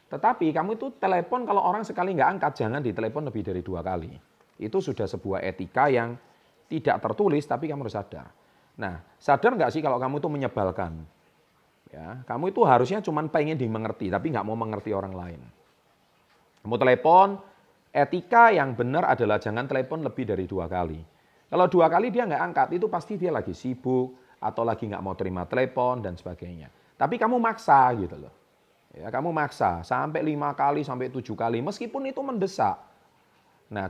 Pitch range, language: 100-155 Hz, Indonesian